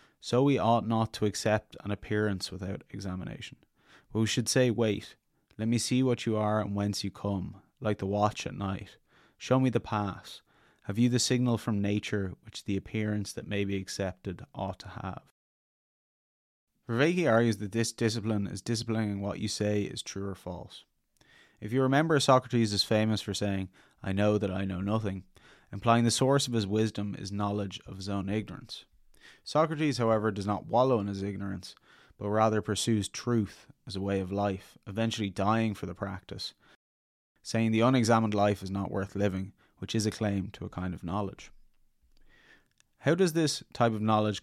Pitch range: 100-115 Hz